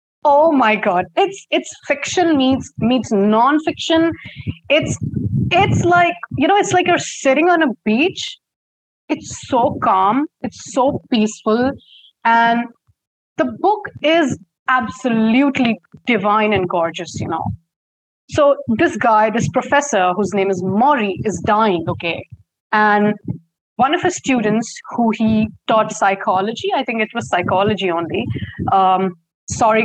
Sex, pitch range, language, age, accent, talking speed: female, 190-265 Hz, English, 30-49, Indian, 135 wpm